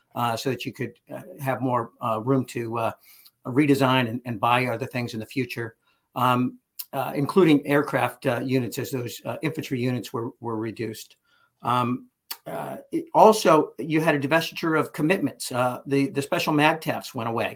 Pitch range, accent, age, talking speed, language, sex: 125-150 Hz, American, 50-69, 180 wpm, English, male